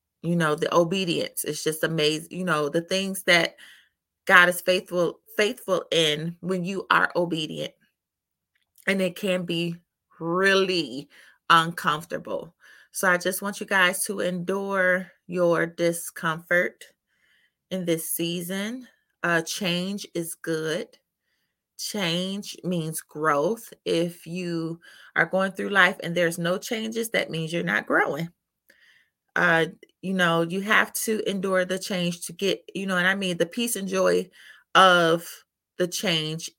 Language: English